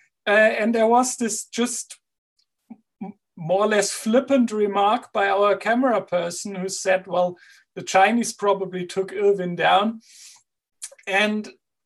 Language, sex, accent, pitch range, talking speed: English, male, German, 205-245 Hz, 125 wpm